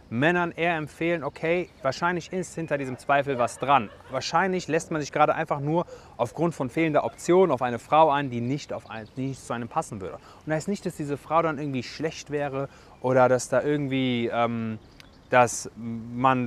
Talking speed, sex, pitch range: 185 wpm, male, 125-165 Hz